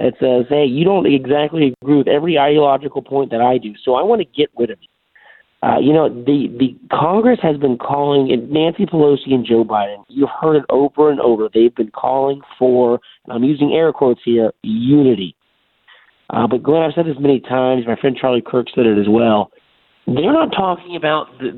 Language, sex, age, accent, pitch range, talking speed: English, male, 40-59, American, 120-155 Hz, 210 wpm